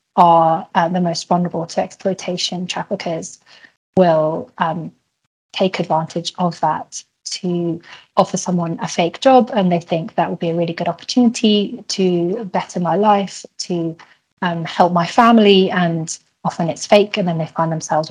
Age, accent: 20-39, British